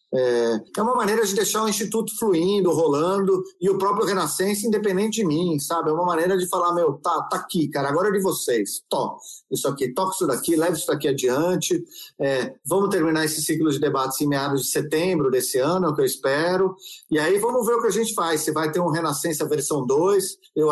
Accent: Brazilian